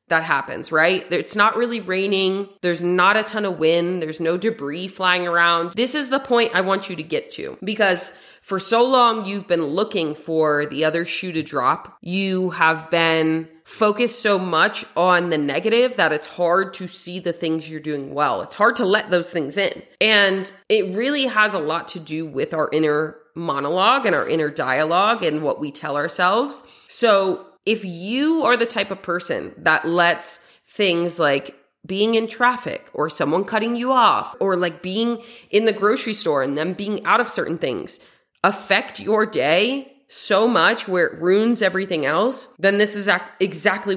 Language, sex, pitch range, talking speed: English, female, 165-215 Hz, 185 wpm